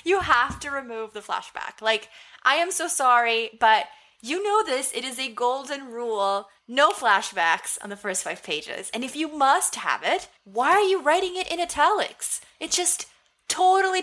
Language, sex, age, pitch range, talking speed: English, female, 20-39, 195-280 Hz, 185 wpm